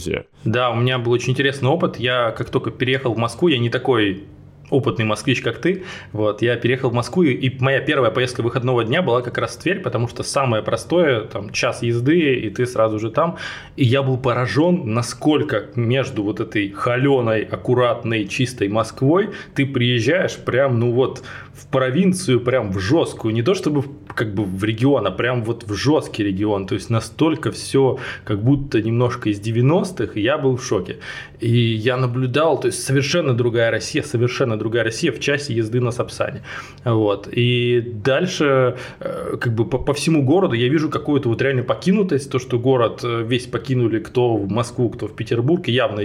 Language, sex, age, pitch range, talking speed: Russian, male, 20-39, 115-135 Hz, 185 wpm